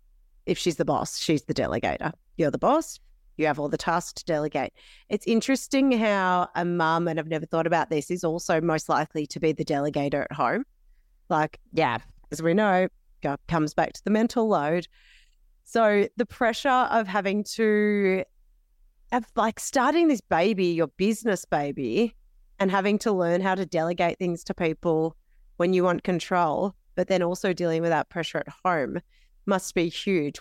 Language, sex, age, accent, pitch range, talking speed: English, female, 30-49, Australian, 160-215 Hz, 175 wpm